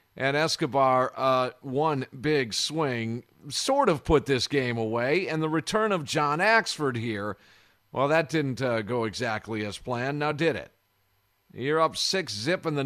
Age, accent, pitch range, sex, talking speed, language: 50-69, American, 115-160 Hz, male, 170 wpm, English